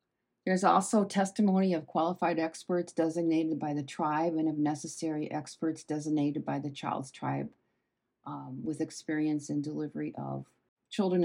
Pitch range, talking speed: 155-195 Hz, 140 wpm